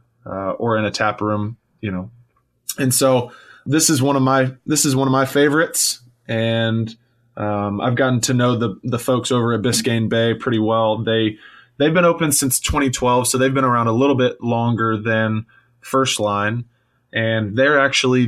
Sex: male